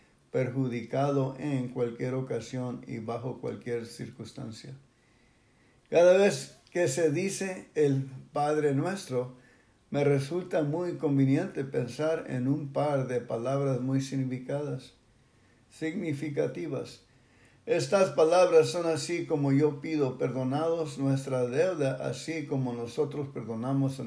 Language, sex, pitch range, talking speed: English, male, 125-150 Hz, 105 wpm